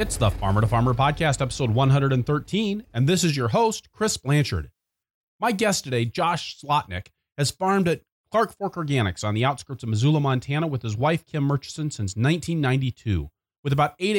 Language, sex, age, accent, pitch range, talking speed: English, male, 30-49, American, 115-160 Hz, 180 wpm